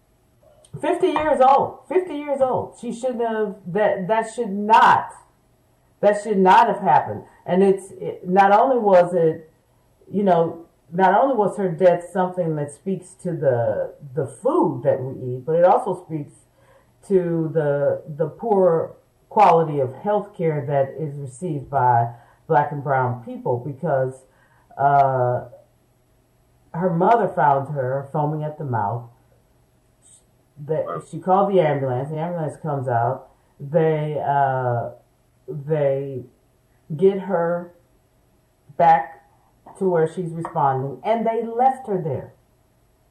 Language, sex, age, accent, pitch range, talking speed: English, female, 50-69, American, 135-190 Hz, 130 wpm